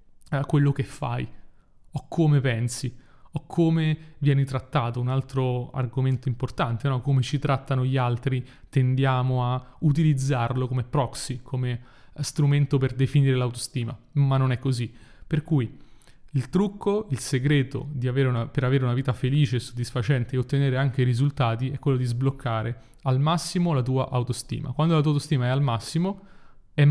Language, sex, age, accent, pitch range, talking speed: Italian, male, 30-49, native, 125-150 Hz, 160 wpm